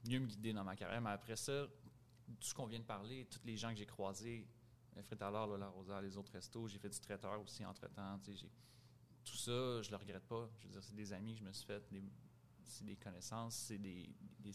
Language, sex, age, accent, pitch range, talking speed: French, male, 30-49, Canadian, 105-120 Hz, 245 wpm